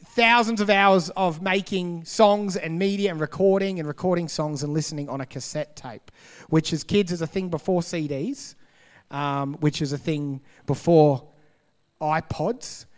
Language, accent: English, Australian